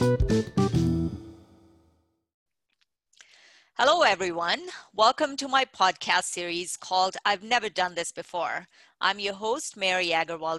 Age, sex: 30-49, female